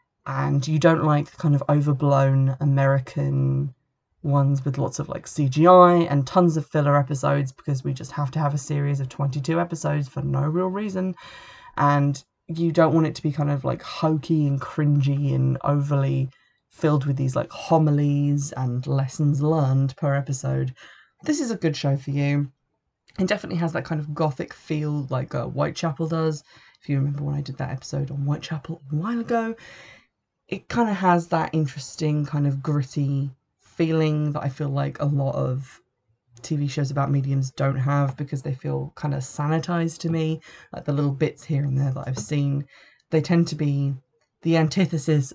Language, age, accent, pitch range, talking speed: English, 20-39, British, 140-160 Hz, 185 wpm